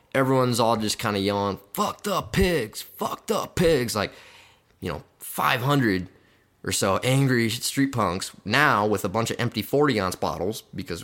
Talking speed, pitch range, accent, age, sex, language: 165 wpm, 95-110 Hz, American, 20-39, male, English